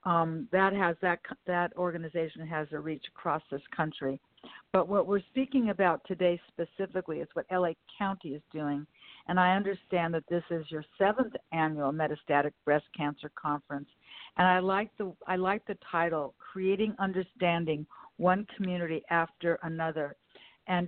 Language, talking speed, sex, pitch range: English, 150 wpm, female, 160-195 Hz